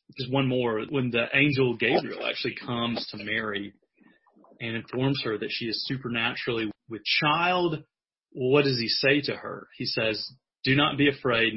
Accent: American